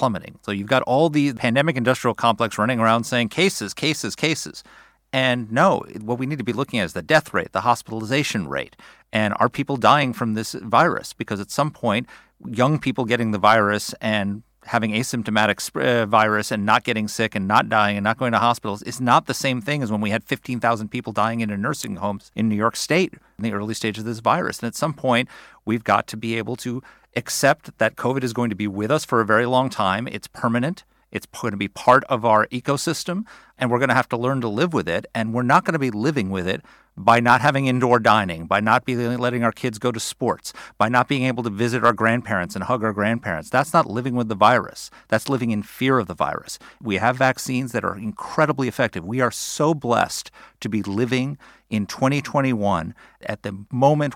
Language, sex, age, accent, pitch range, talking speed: English, male, 40-59, American, 105-130 Hz, 225 wpm